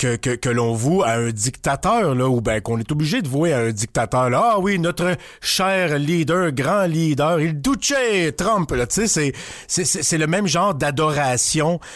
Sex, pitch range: male, 120-160 Hz